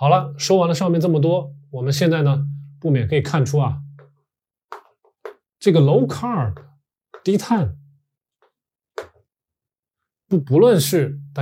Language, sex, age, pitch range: Chinese, male, 20-39, 125-155 Hz